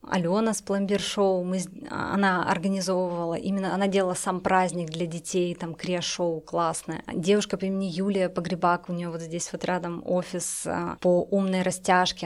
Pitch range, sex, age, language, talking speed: 175-200 Hz, female, 20-39, Russian, 145 wpm